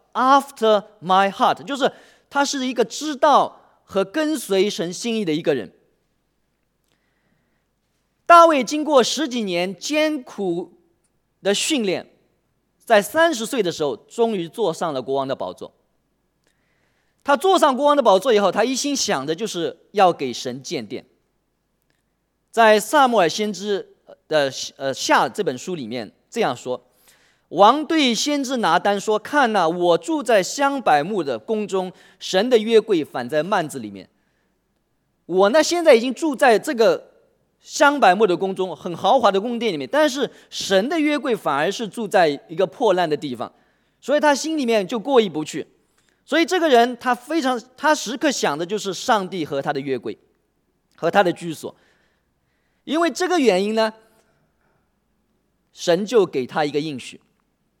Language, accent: English, Chinese